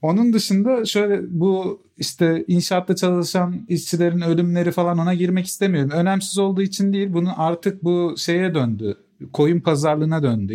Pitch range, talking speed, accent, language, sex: 135-170 Hz, 140 wpm, native, Turkish, male